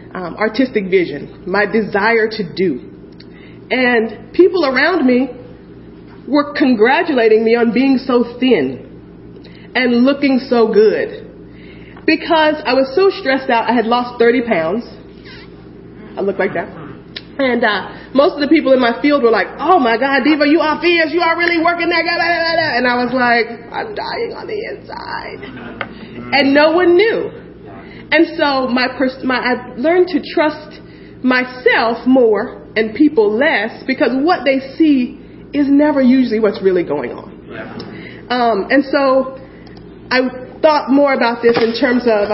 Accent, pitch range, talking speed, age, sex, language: American, 225-295 Hz, 155 wpm, 30-49, female, English